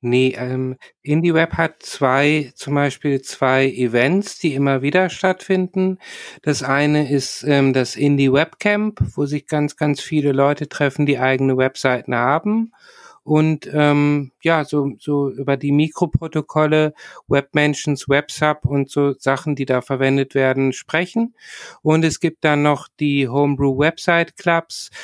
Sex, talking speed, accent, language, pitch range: male, 135 wpm, German, German, 135-160 Hz